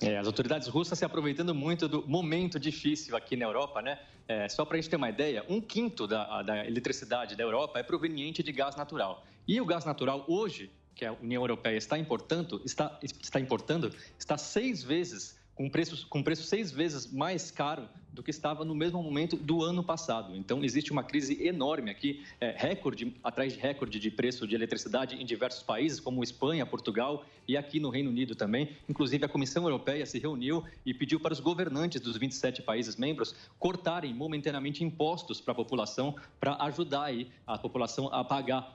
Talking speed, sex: 190 wpm, male